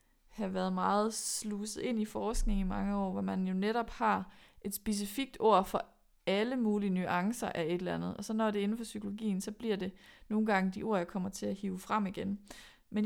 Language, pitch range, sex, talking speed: Danish, 200-245 Hz, female, 225 wpm